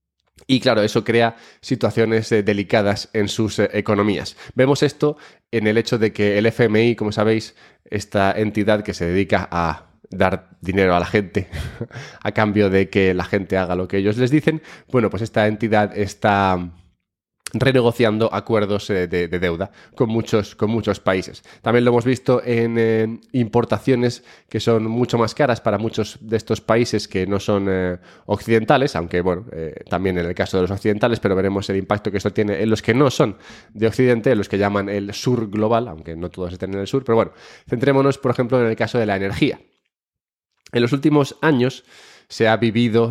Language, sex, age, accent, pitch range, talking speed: English, male, 20-39, Spanish, 100-115 Hz, 185 wpm